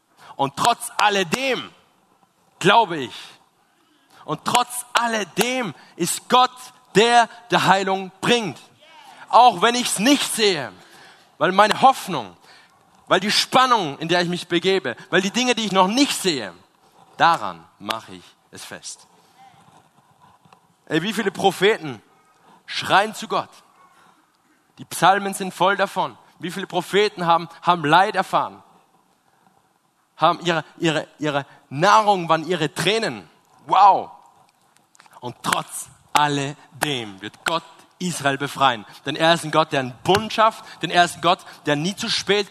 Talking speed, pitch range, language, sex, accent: 135 wpm, 140-205 Hz, German, male, German